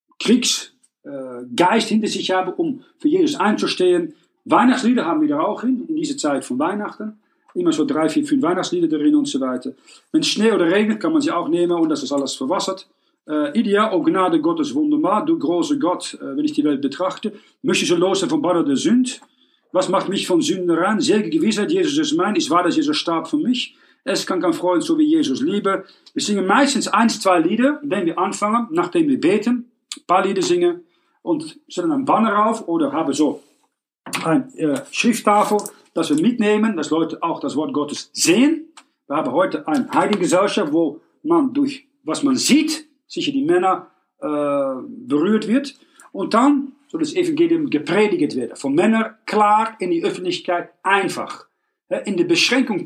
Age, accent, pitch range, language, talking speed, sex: 50-69, Dutch, 205-310 Hz, German, 180 wpm, male